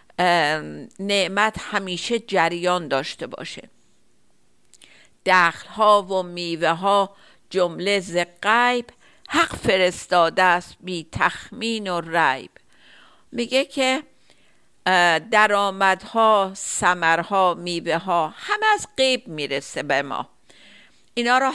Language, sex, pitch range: Persian, female, 175-220 Hz